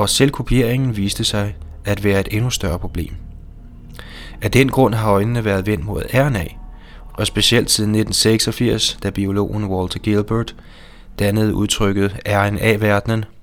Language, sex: Danish, male